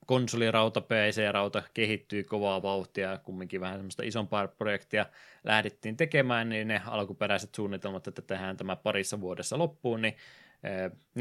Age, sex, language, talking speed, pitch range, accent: 20-39, male, Finnish, 125 wpm, 95-110 Hz, native